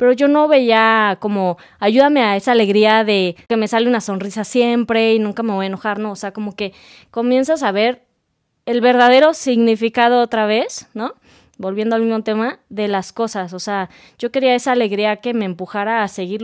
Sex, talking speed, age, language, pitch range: female, 195 wpm, 20-39, Spanish, 195-235 Hz